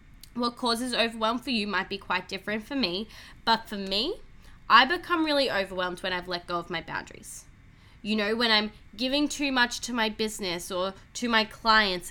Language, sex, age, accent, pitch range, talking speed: English, female, 10-29, Australian, 190-250 Hz, 195 wpm